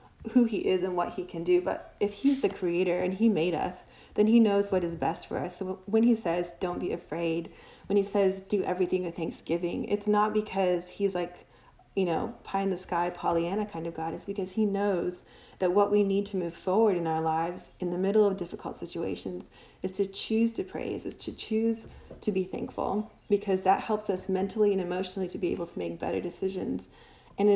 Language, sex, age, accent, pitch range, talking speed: English, female, 30-49, American, 175-210 Hz, 220 wpm